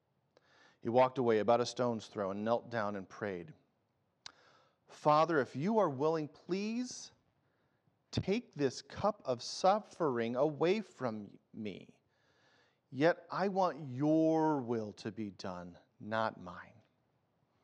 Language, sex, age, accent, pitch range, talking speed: English, male, 40-59, American, 120-170 Hz, 125 wpm